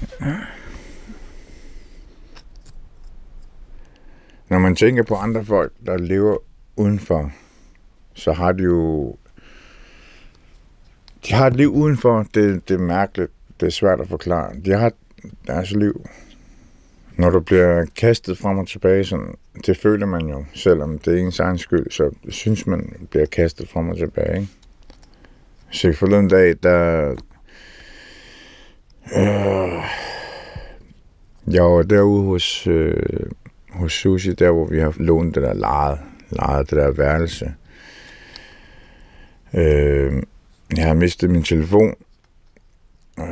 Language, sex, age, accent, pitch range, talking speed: Danish, male, 60-79, native, 80-100 Hz, 125 wpm